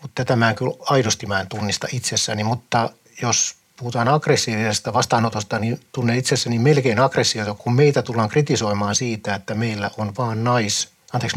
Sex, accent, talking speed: male, native, 160 wpm